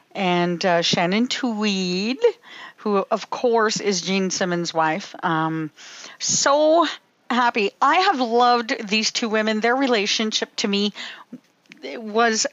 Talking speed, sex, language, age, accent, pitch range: 120 wpm, female, English, 50-69, American, 180-230 Hz